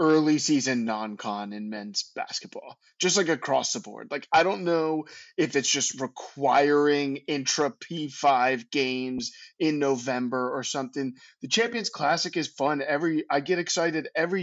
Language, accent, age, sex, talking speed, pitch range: English, American, 20-39, male, 155 wpm, 130-175 Hz